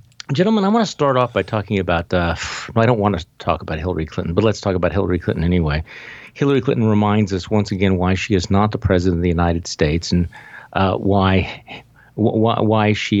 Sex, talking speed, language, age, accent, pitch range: male, 215 wpm, English, 50-69, American, 95-115 Hz